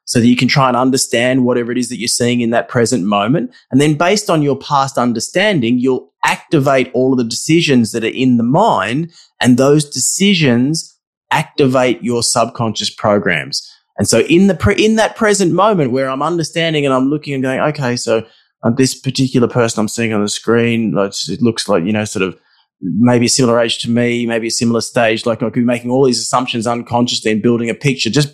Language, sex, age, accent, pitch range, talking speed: English, male, 20-39, Australian, 110-130 Hz, 215 wpm